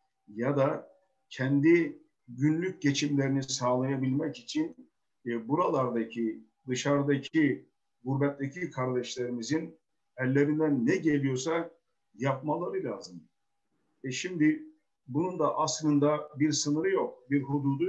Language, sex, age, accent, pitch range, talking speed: Turkish, male, 50-69, native, 130-170 Hz, 90 wpm